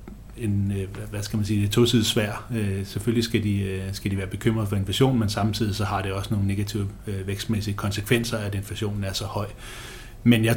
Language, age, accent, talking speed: Danish, 30-49, native, 185 wpm